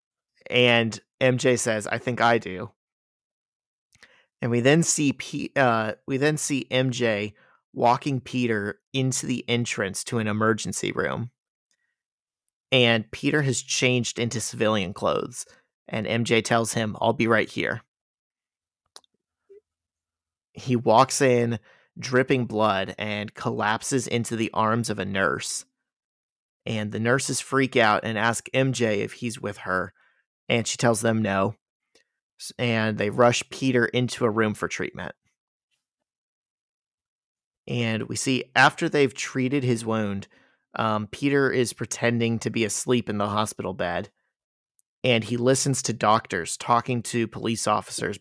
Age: 30-49